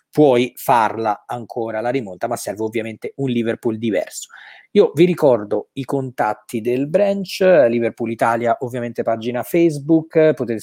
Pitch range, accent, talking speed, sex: 120-150 Hz, native, 135 wpm, male